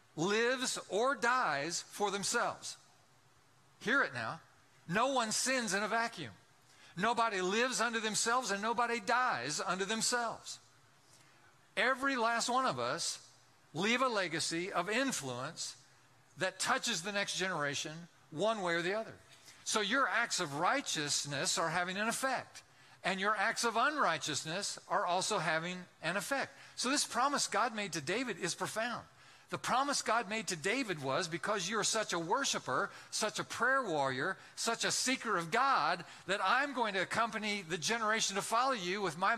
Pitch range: 170-230 Hz